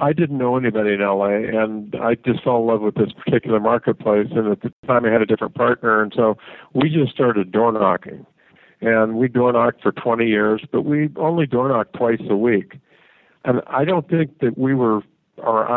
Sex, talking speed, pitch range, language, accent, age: male, 210 wpm, 110-125 Hz, English, American, 50-69